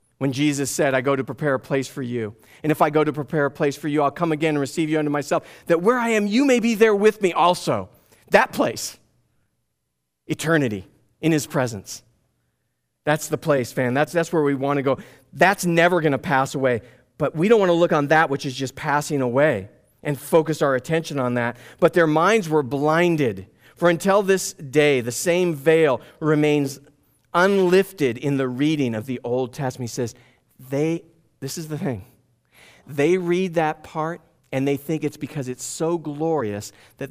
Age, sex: 40-59, male